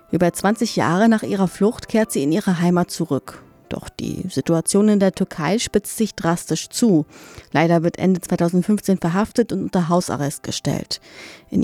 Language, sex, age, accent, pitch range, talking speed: German, female, 30-49, German, 170-210 Hz, 165 wpm